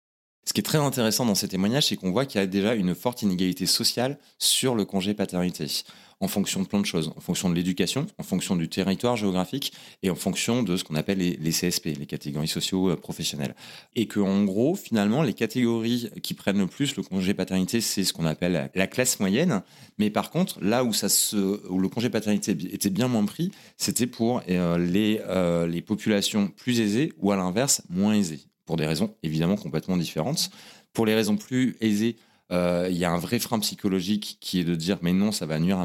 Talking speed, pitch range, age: 215 wpm, 90-110 Hz, 30-49